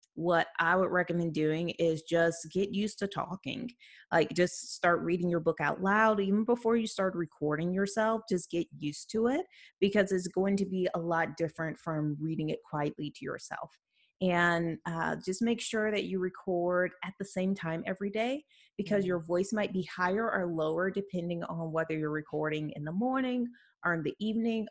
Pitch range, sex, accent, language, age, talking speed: 165-210 Hz, female, American, English, 30-49, 190 wpm